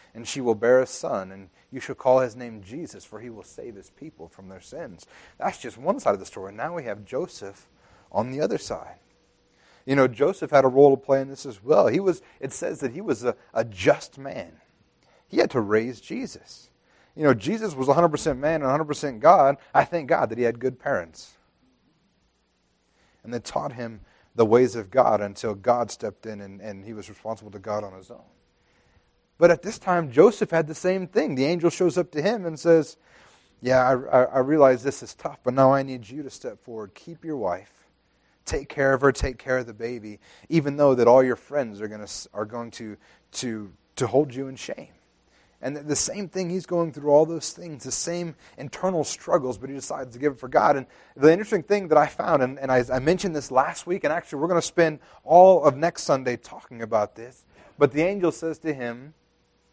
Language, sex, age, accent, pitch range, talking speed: English, male, 30-49, American, 115-155 Hz, 220 wpm